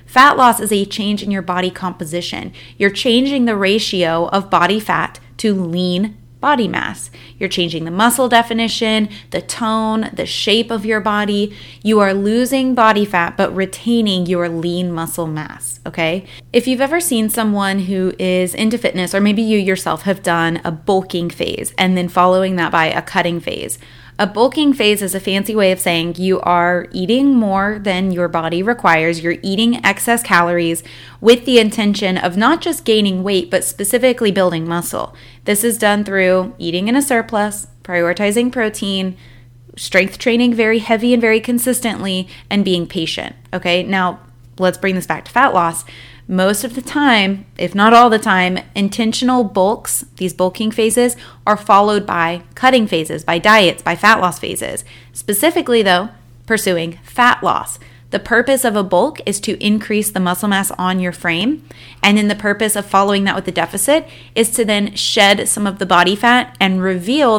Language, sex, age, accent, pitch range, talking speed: English, female, 20-39, American, 175-220 Hz, 175 wpm